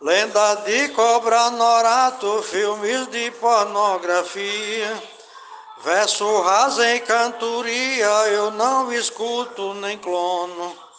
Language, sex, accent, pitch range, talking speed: Portuguese, male, Brazilian, 150-205 Hz, 85 wpm